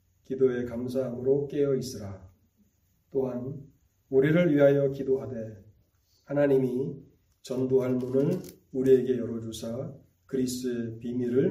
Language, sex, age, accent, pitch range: Korean, male, 40-59, native, 115-140 Hz